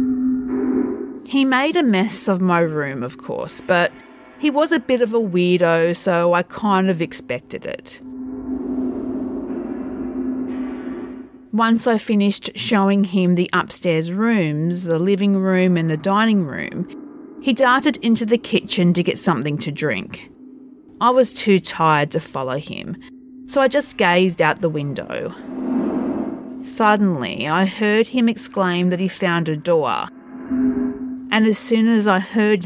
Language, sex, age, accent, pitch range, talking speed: English, female, 40-59, Australian, 180-255 Hz, 145 wpm